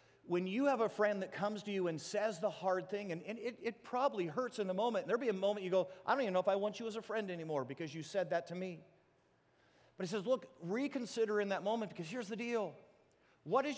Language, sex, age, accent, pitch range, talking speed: English, male, 40-59, American, 180-235 Hz, 265 wpm